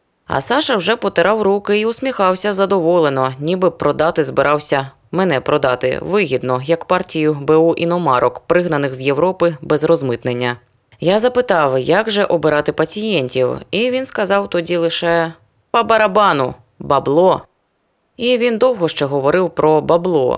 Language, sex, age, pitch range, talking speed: Ukrainian, female, 20-39, 135-185 Hz, 135 wpm